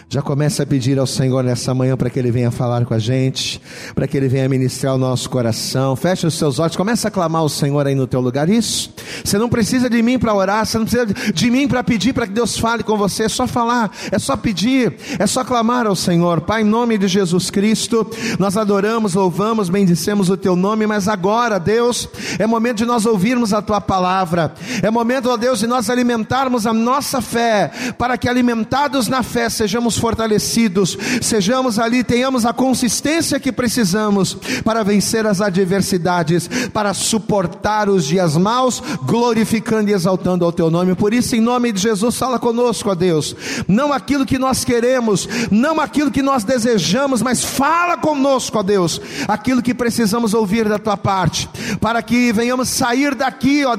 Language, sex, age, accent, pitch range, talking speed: Portuguese, male, 40-59, Brazilian, 190-245 Hz, 190 wpm